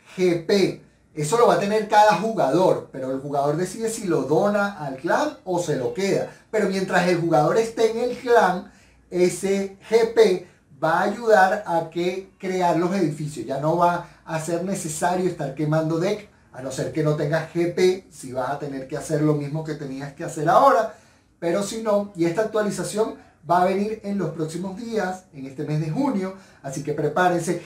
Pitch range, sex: 150-195 Hz, male